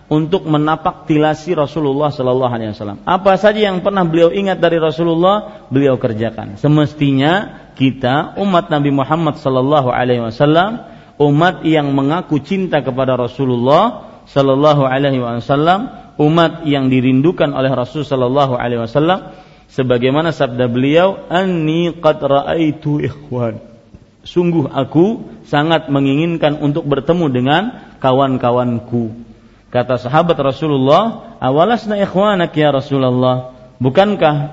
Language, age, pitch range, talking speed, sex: Malay, 40-59, 130-175 Hz, 115 wpm, male